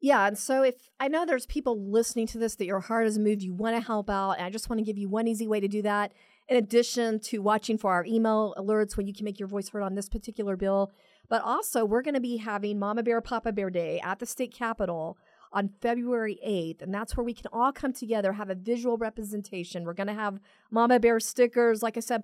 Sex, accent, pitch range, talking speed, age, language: female, American, 195-235 Hz, 255 wpm, 40-59, English